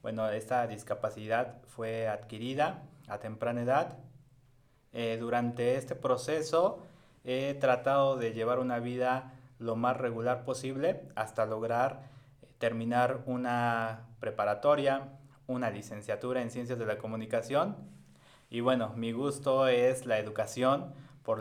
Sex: male